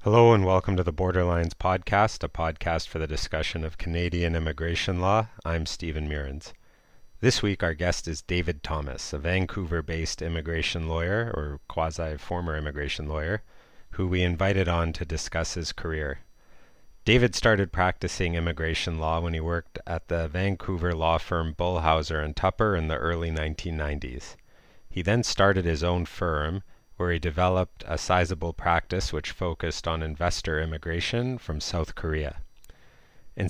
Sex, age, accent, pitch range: male, 30-49, American, 80-95 Hz